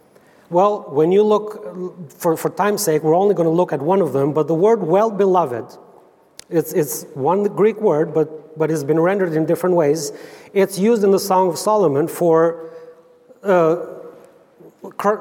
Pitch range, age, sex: 165-205 Hz, 30-49, male